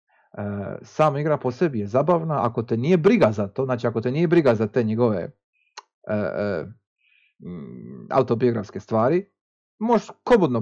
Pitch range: 110-155 Hz